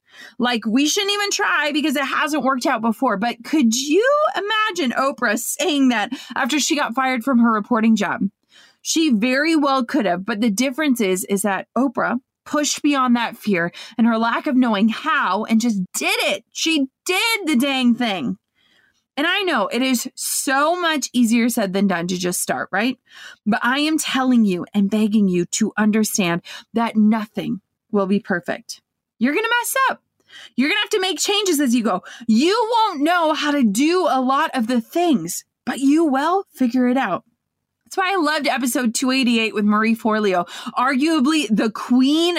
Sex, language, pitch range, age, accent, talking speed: female, English, 220-295 Hz, 30-49, American, 185 wpm